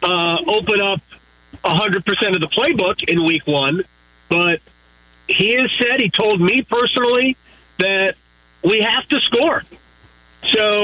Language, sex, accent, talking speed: English, male, American, 135 wpm